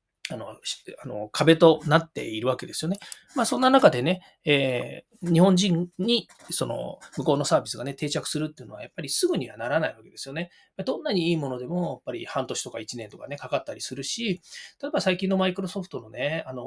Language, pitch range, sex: Japanese, 145-200 Hz, male